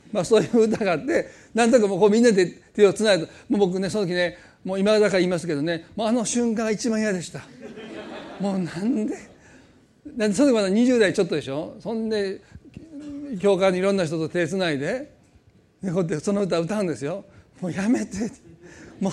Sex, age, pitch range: male, 40-59, 190-235 Hz